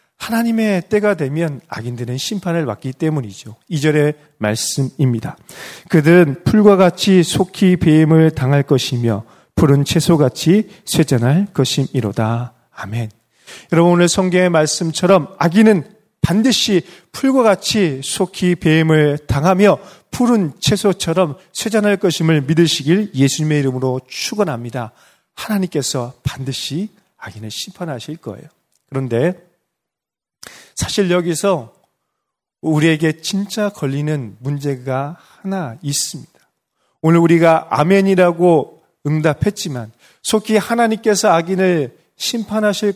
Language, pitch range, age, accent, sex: Korean, 140-195 Hz, 40-59, native, male